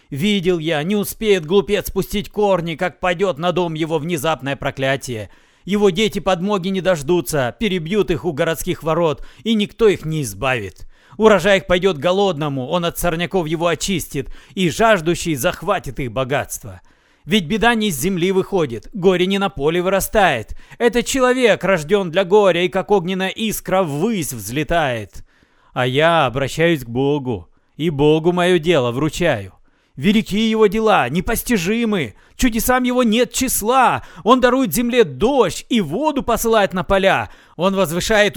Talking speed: 145 wpm